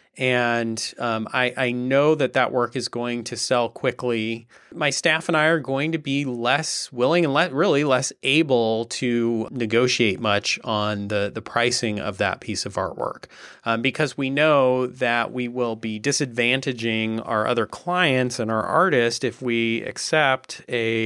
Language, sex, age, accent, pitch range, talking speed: English, male, 30-49, American, 110-135 Hz, 170 wpm